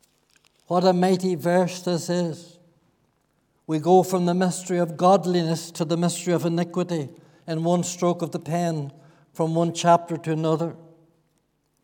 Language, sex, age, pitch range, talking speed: English, male, 60-79, 165-180 Hz, 145 wpm